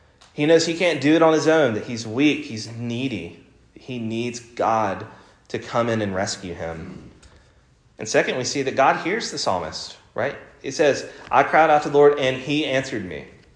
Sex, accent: male, American